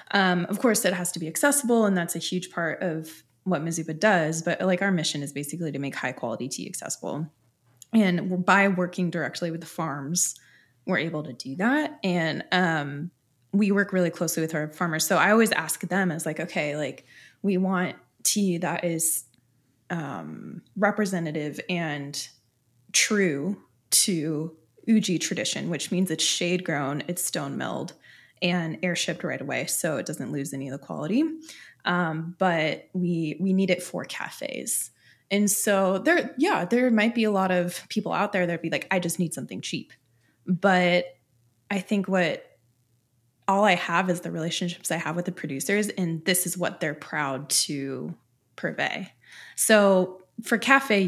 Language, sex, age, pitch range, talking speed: English, female, 20-39, 155-190 Hz, 175 wpm